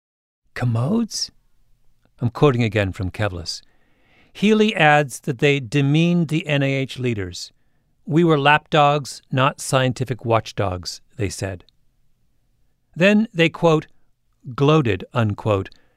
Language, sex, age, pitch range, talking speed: English, male, 40-59, 115-145 Hz, 100 wpm